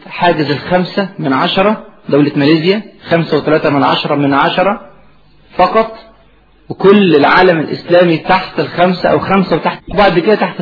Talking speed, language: 135 wpm, Arabic